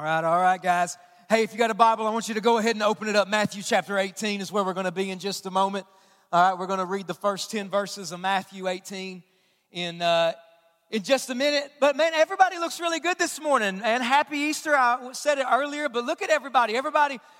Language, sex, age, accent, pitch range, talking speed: English, male, 40-59, American, 225-295 Hz, 250 wpm